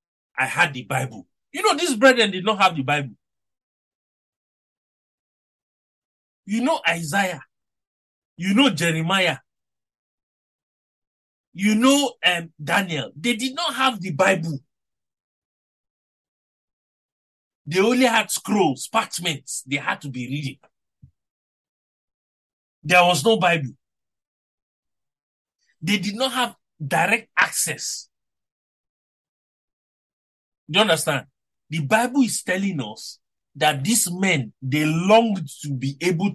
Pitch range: 140-205 Hz